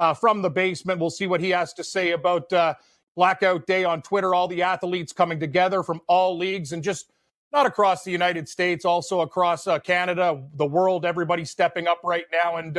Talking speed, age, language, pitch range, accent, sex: 205 wpm, 40-59, English, 170-190 Hz, American, male